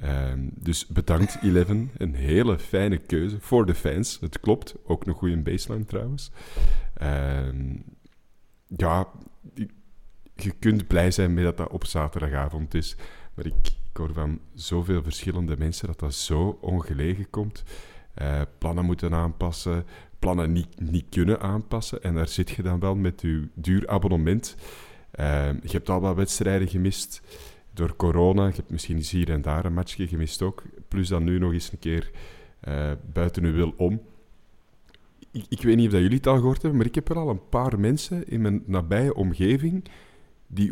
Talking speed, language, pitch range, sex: 170 wpm, Dutch, 80-100 Hz, male